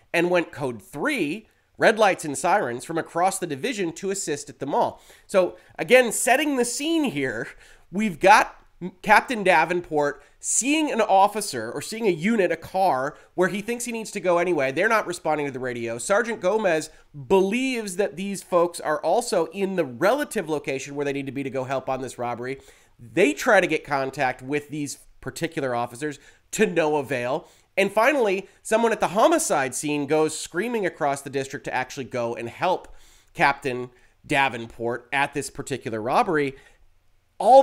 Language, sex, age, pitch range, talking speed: English, male, 30-49, 140-195 Hz, 175 wpm